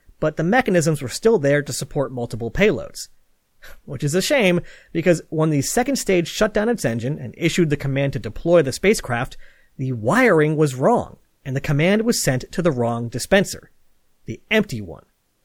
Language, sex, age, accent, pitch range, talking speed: English, male, 30-49, American, 135-195 Hz, 185 wpm